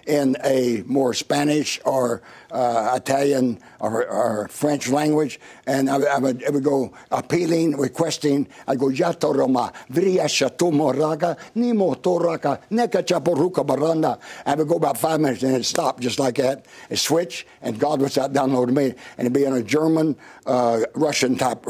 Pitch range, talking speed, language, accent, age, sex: 130-150 Hz, 135 wpm, English, American, 60-79, male